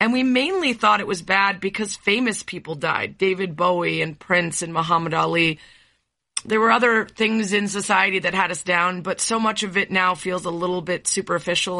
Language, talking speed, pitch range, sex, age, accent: English, 200 wpm, 170-200 Hz, female, 30-49, American